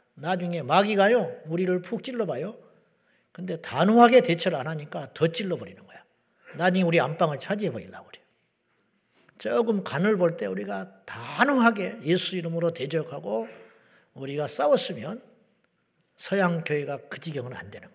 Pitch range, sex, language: 150-200 Hz, male, Korean